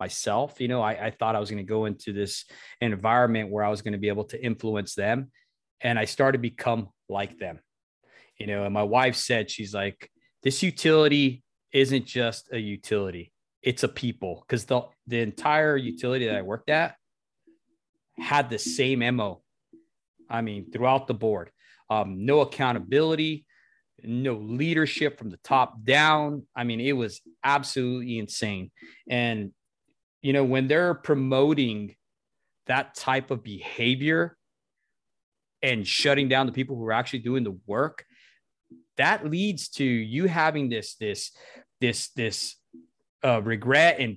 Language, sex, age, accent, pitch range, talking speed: English, male, 30-49, American, 110-140 Hz, 155 wpm